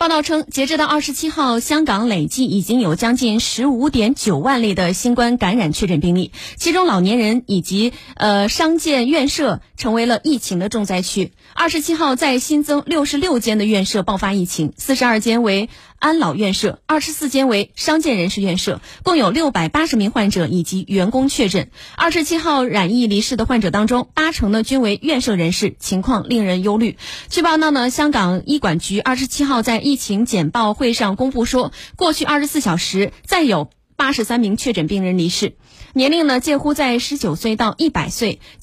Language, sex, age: Chinese, female, 30-49